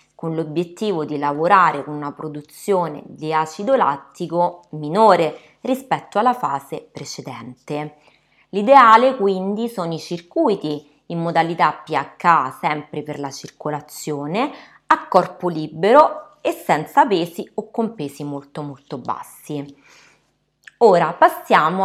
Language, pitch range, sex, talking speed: Italian, 150-205 Hz, female, 115 wpm